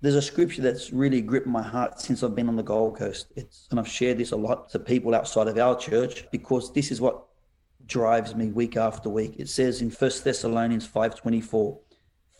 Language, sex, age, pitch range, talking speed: English, male, 30-49, 120-135 Hz, 210 wpm